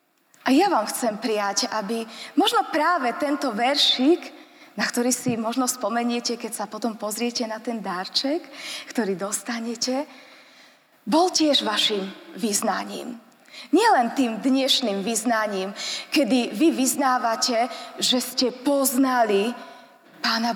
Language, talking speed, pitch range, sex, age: Slovak, 115 wpm, 225-290 Hz, female, 20-39